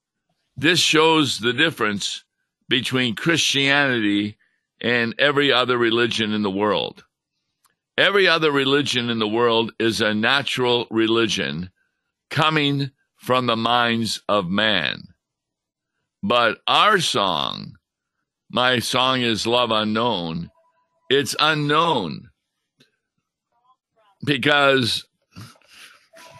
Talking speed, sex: 90 wpm, male